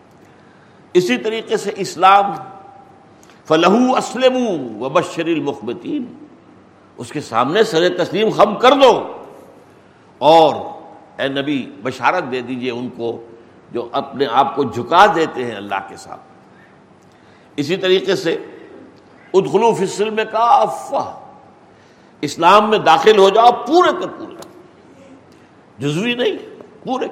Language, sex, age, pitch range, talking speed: Urdu, male, 60-79, 155-225 Hz, 115 wpm